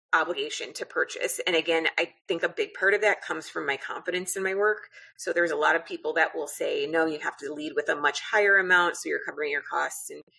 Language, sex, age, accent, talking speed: English, female, 30-49, American, 255 wpm